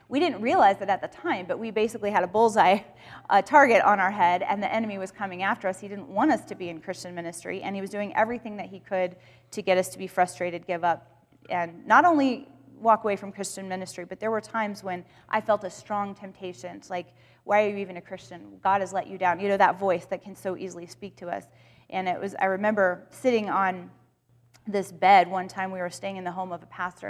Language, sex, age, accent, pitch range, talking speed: English, female, 30-49, American, 180-210 Hz, 250 wpm